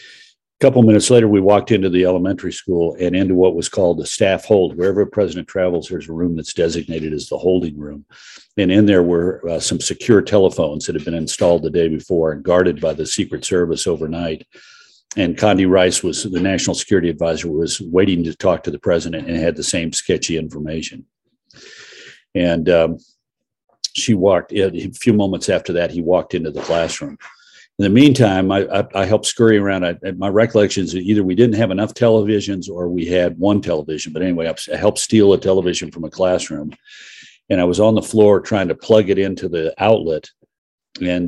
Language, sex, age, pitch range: English, male, 50-69, 90-105 Hz